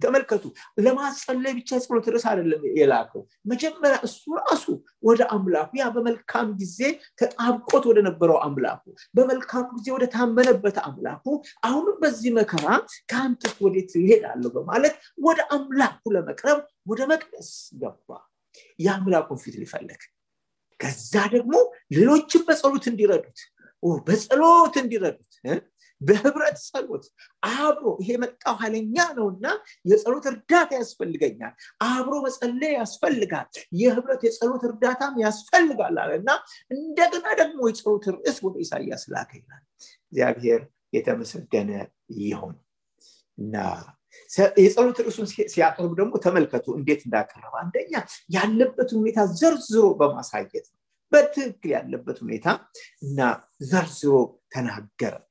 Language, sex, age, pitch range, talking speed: English, male, 50-69, 210-295 Hz, 70 wpm